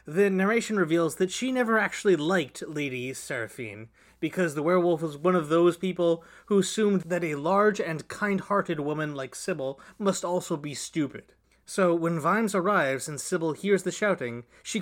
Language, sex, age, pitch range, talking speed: English, male, 30-49, 150-190 Hz, 170 wpm